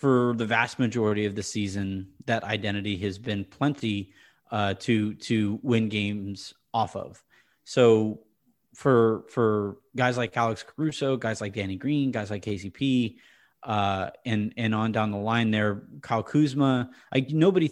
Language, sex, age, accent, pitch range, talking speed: English, male, 30-49, American, 110-130 Hz, 150 wpm